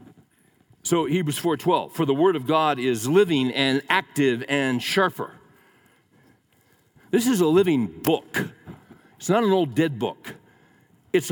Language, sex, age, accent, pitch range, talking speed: English, male, 60-79, American, 135-170 Hz, 140 wpm